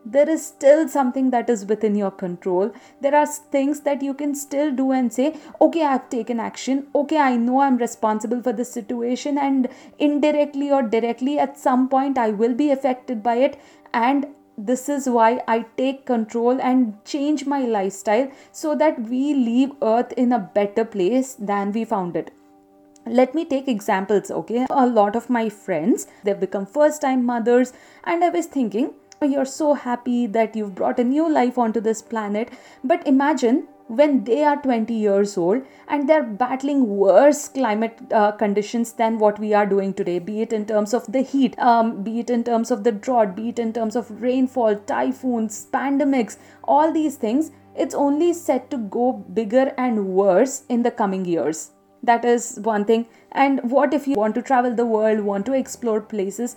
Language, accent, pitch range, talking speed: English, Indian, 220-275 Hz, 185 wpm